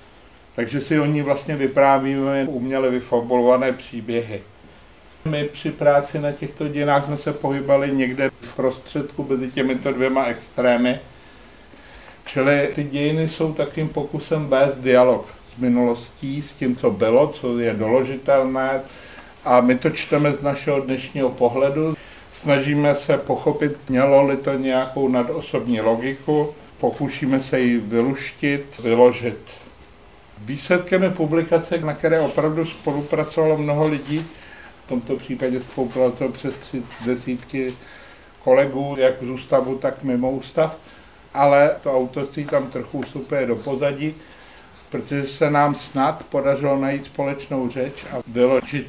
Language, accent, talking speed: Czech, native, 130 wpm